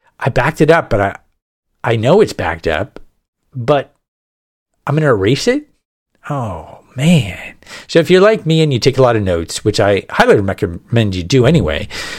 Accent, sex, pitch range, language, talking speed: American, male, 100-135 Hz, English, 180 wpm